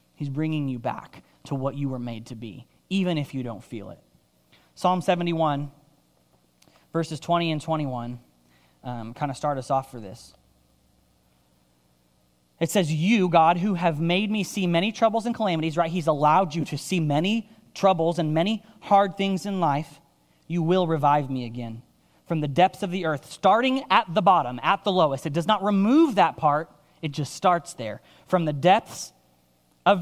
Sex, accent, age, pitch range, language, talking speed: male, American, 30-49, 115-175 Hz, English, 180 wpm